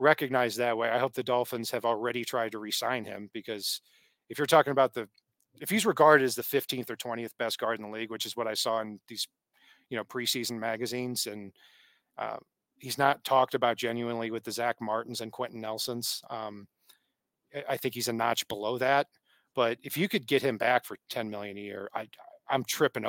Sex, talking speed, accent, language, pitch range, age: male, 210 wpm, American, English, 115-145 Hz, 40-59